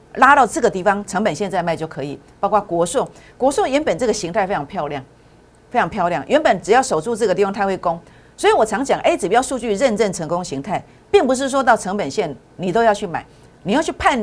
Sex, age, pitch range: female, 50-69, 165-235 Hz